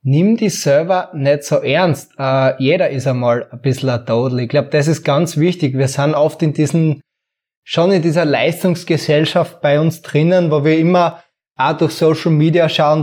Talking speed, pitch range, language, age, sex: 185 wpm, 140-170 Hz, German, 20-39, male